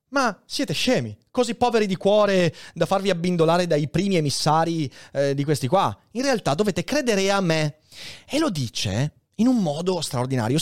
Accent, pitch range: native, 130-200 Hz